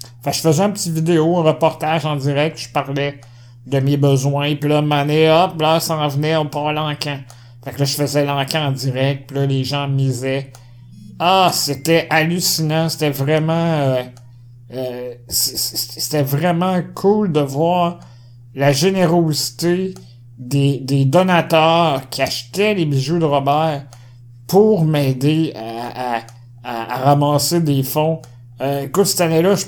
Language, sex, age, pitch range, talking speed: French, male, 60-79, 130-155 Hz, 150 wpm